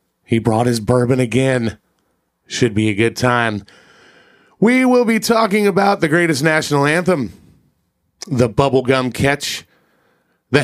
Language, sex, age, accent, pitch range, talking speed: English, male, 30-49, American, 120-160 Hz, 130 wpm